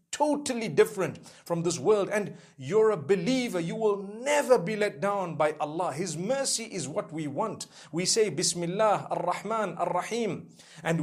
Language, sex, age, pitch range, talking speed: English, male, 50-69, 155-205 Hz, 160 wpm